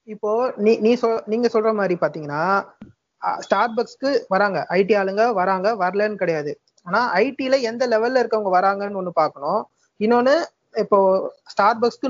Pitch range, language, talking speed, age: 200-235 Hz, Tamil, 130 wpm, 30-49